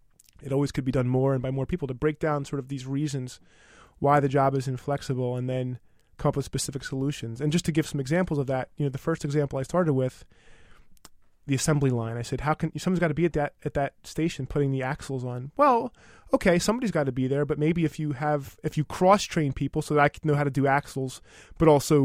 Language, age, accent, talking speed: English, 20-39, American, 255 wpm